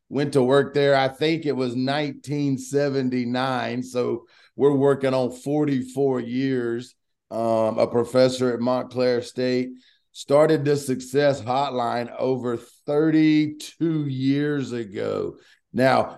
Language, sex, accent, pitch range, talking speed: English, male, American, 115-140 Hz, 110 wpm